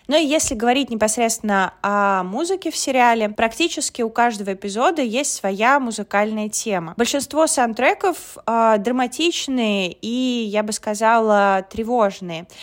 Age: 20-39